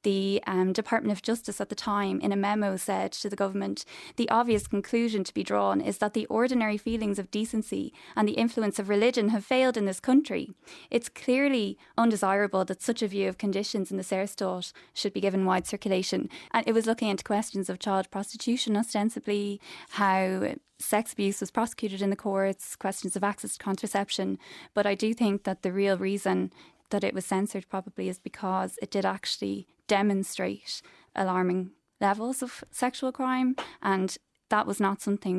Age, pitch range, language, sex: 20-39, 190-220 Hz, English, female